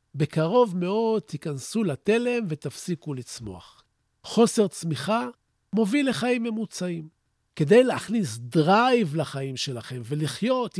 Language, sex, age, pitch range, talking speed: Hebrew, male, 50-69, 155-225 Hz, 95 wpm